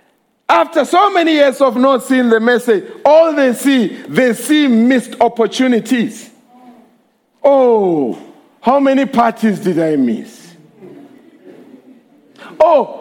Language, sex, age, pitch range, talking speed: English, male, 50-69, 230-305 Hz, 110 wpm